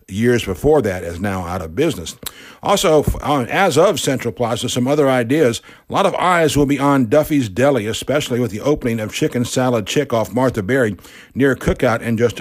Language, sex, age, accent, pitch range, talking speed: English, male, 60-79, American, 120-145 Hz, 195 wpm